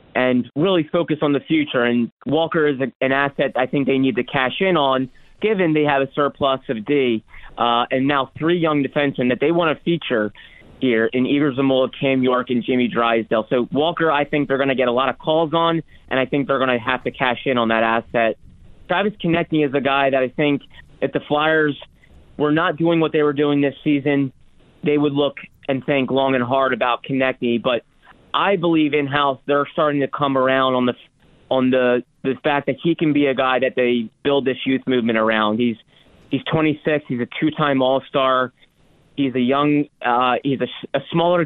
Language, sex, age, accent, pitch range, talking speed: English, male, 30-49, American, 125-145 Hz, 215 wpm